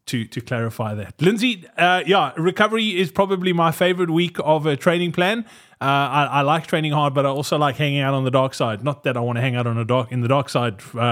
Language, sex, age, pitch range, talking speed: English, male, 20-39, 140-185 Hz, 255 wpm